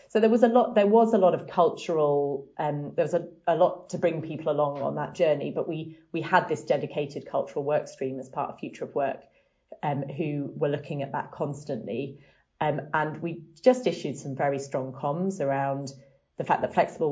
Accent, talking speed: British, 215 wpm